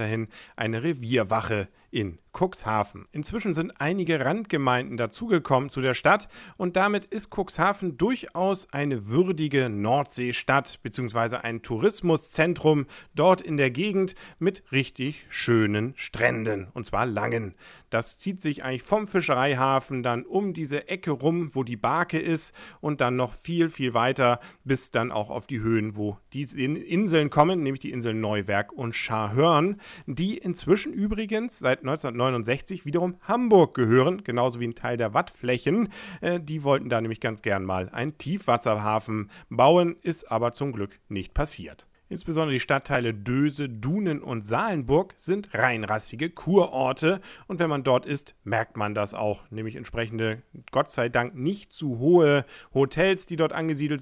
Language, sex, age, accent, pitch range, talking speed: English, male, 40-59, German, 115-165 Hz, 150 wpm